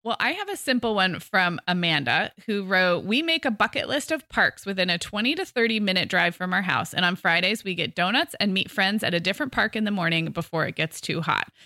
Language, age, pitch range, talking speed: English, 20-39, 175-245 Hz, 245 wpm